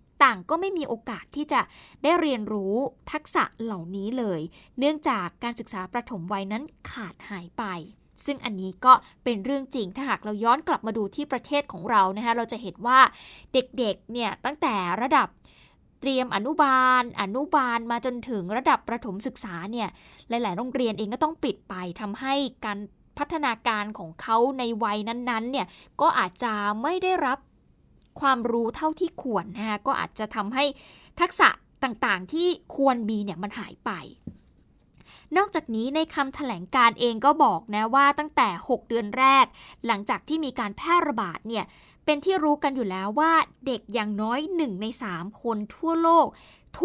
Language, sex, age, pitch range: Thai, female, 10-29, 210-280 Hz